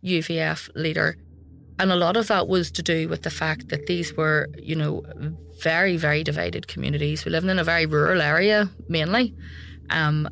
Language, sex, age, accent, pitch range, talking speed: English, female, 30-49, Irish, 150-175 Hz, 180 wpm